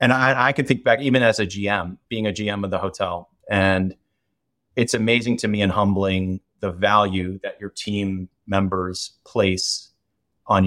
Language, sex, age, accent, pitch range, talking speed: English, male, 30-49, American, 95-110 Hz, 175 wpm